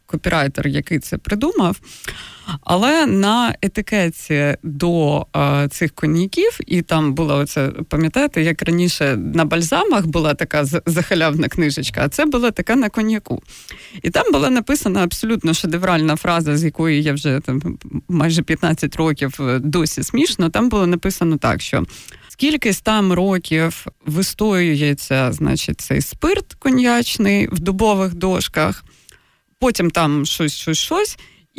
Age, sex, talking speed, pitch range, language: 20-39, female, 130 wpm, 155-220 Hz, Ukrainian